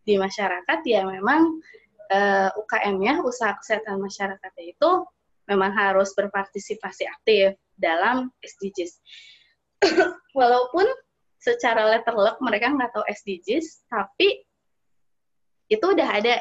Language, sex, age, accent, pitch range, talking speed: Indonesian, female, 20-39, native, 200-290 Hz, 100 wpm